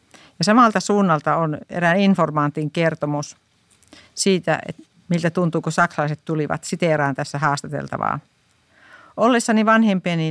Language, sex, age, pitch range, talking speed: Finnish, female, 50-69, 155-185 Hz, 110 wpm